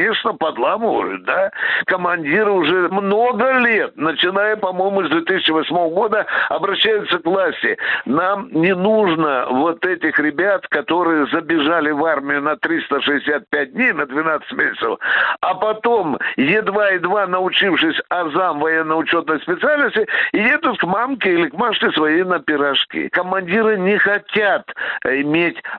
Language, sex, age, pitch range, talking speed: Russian, male, 60-79, 165-225 Hz, 120 wpm